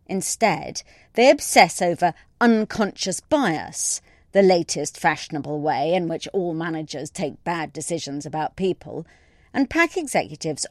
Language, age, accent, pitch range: English, 40-59, British, 155-220 Hz